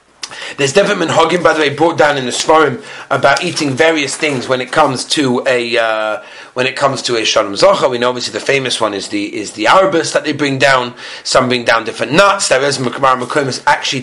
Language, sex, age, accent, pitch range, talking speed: English, male, 30-49, British, 125-165 Hz, 220 wpm